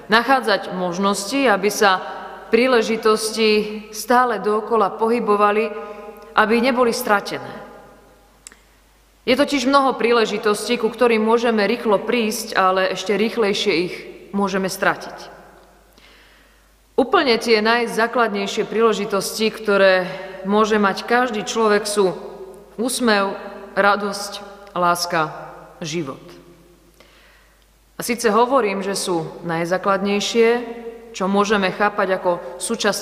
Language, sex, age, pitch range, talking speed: Slovak, female, 30-49, 195-230 Hz, 90 wpm